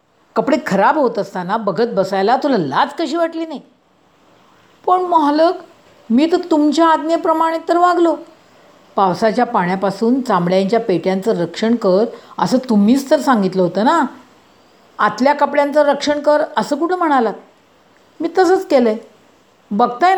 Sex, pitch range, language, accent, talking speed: female, 185-280 Hz, Marathi, native, 125 wpm